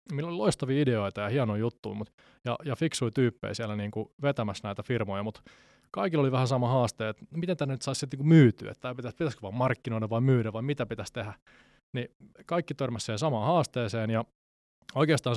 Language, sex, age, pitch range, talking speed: Finnish, male, 20-39, 110-135 Hz, 185 wpm